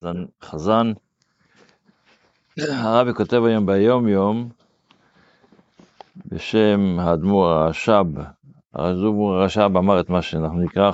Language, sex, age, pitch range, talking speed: Hebrew, male, 50-69, 90-110 Hz, 80 wpm